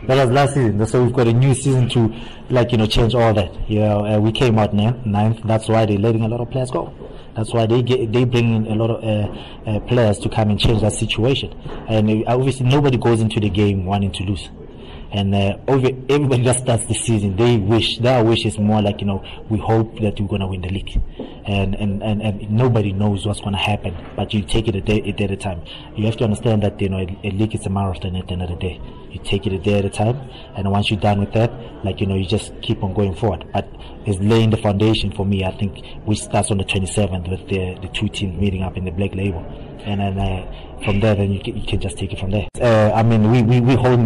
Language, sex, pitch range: English, male, 100-115 Hz